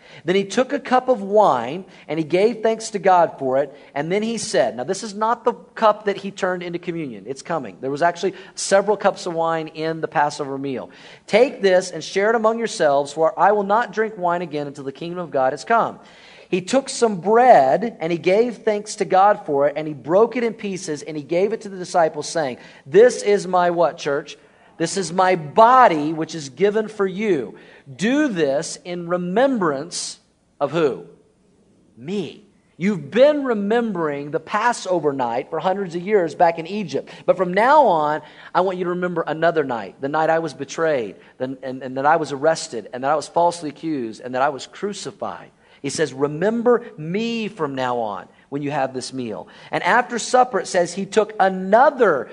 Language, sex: English, male